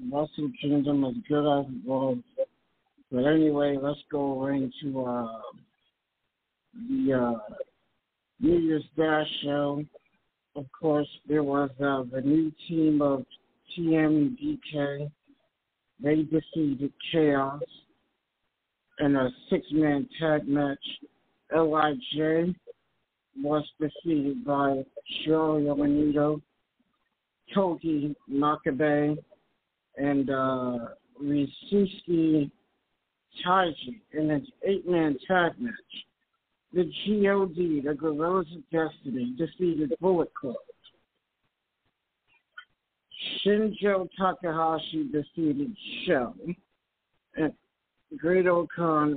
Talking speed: 85 wpm